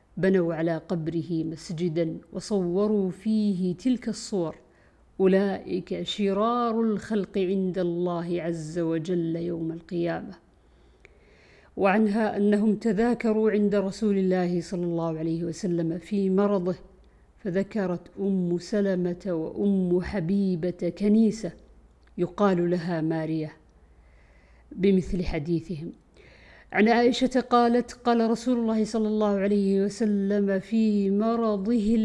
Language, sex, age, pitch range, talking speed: Arabic, female, 50-69, 170-210 Hz, 95 wpm